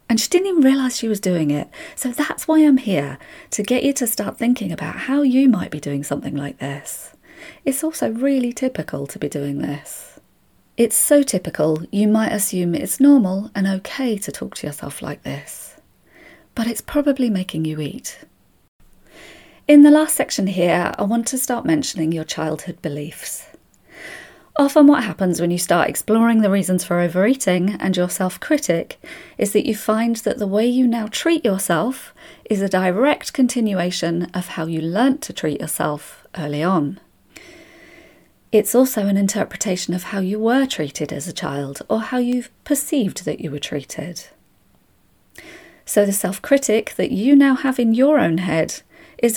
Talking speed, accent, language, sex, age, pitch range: 175 wpm, British, English, female, 30-49, 175-265 Hz